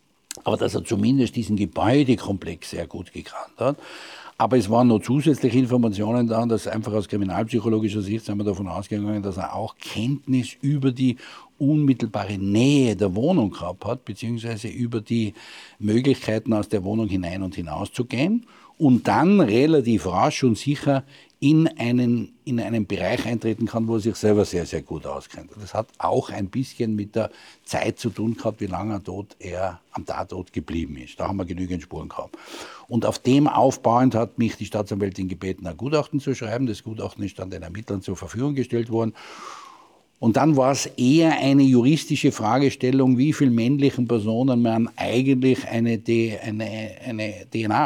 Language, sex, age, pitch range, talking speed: German, male, 60-79, 105-130 Hz, 170 wpm